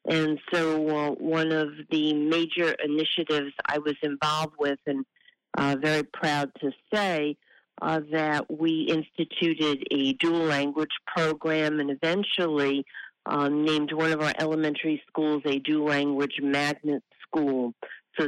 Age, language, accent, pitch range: 50-69, English, American, 140-155 Hz